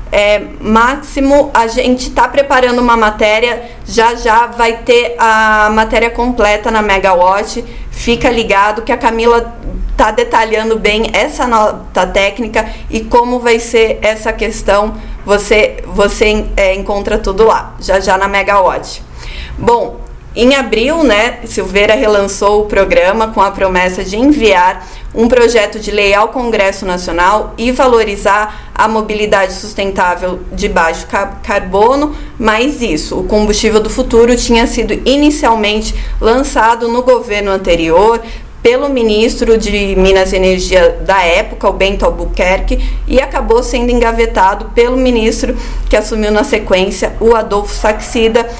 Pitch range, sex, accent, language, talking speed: 200-245 Hz, female, Brazilian, Portuguese, 135 wpm